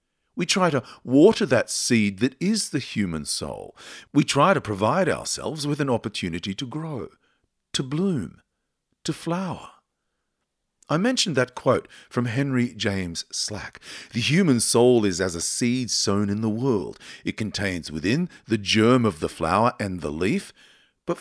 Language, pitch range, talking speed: English, 100-150 Hz, 160 wpm